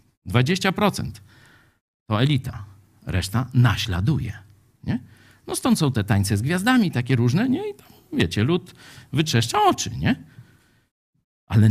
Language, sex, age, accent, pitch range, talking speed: Polish, male, 50-69, native, 100-140 Hz, 125 wpm